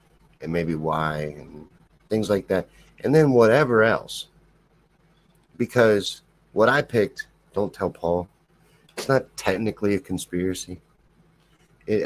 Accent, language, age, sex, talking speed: American, English, 50-69, male, 120 wpm